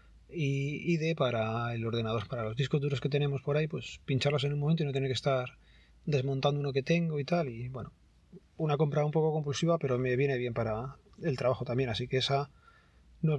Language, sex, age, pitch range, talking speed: Spanish, male, 30-49, 130-155 Hz, 220 wpm